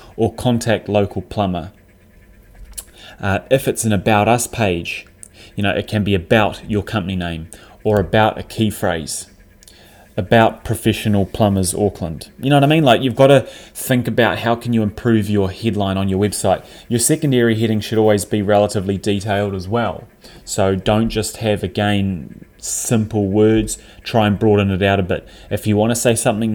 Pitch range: 95-110 Hz